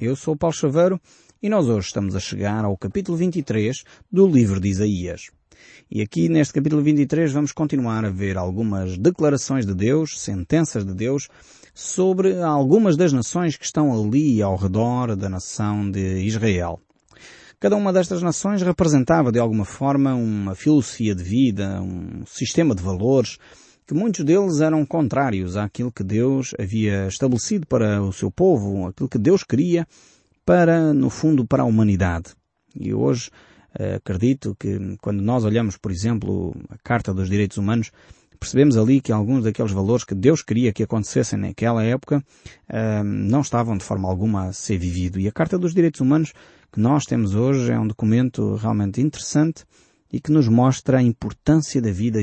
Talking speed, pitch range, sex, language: 165 wpm, 100-150 Hz, male, Portuguese